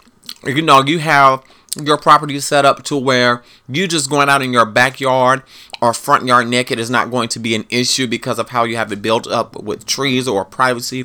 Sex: male